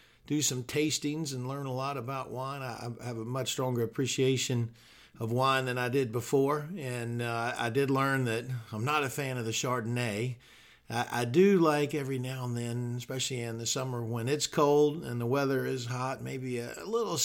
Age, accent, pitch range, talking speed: 50-69, American, 115-140 Hz, 195 wpm